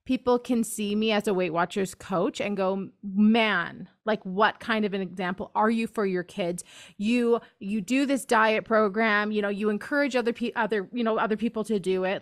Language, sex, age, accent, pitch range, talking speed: English, female, 30-49, American, 205-245 Hz, 205 wpm